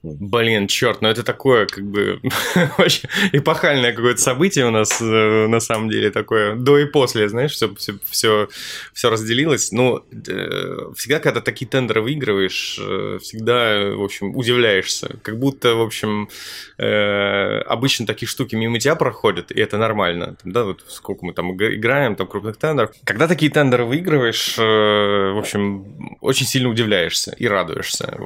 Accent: native